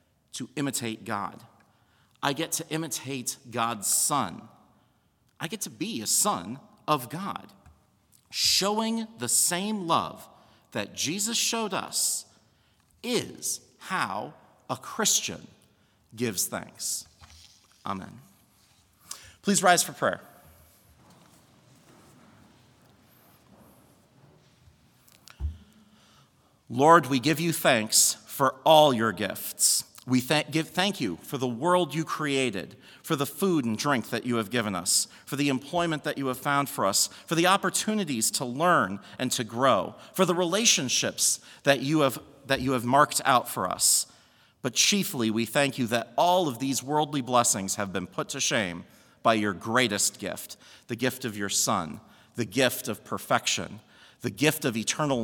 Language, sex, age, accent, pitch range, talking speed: English, male, 40-59, American, 110-155 Hz, 135 wpm